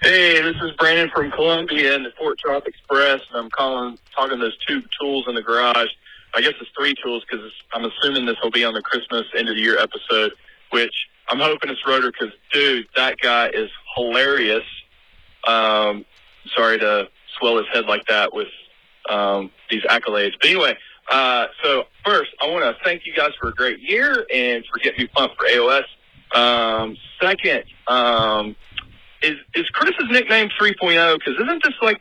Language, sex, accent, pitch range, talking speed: English, male, American, 115-180 Hz, 185 wpm